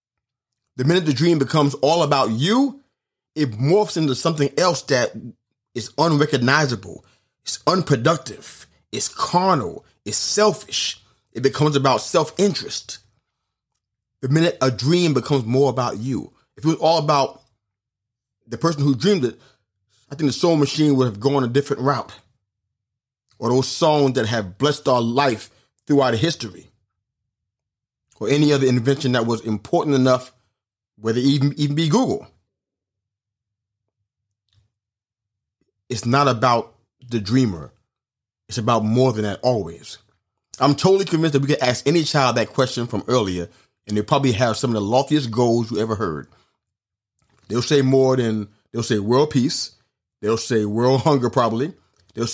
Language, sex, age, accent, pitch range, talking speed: English, male, 30-49, American, 110-140 Hz, 150 wpm